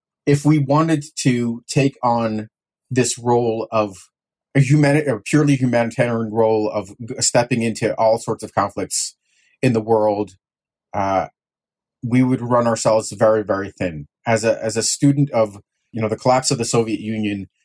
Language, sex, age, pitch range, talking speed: English, male, 30-49, 105-125 Hz, 165 wpm